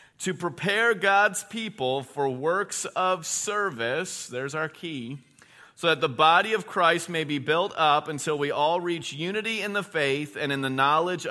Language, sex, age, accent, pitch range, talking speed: English, male, 40-59, American, 135-180 Hz, 175 wpm